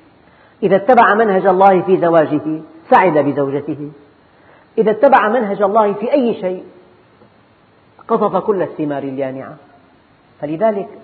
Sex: female